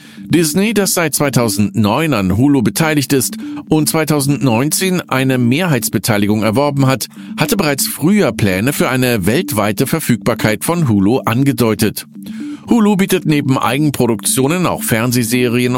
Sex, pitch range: male, 115-180 Hz